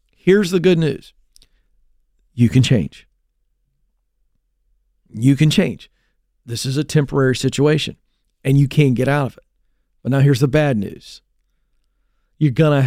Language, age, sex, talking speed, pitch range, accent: English, 50-69, male, 145 wpm, 125-150 Hz, American